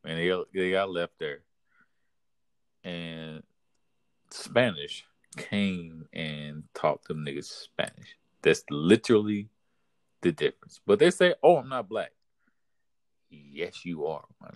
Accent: American